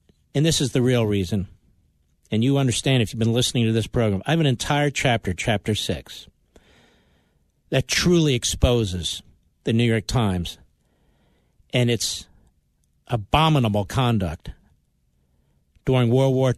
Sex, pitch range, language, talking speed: male, 100-150 Hz, English, 135 wpm